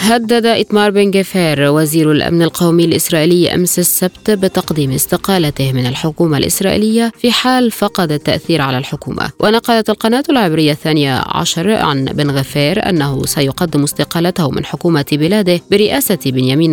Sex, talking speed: female, 125 wpm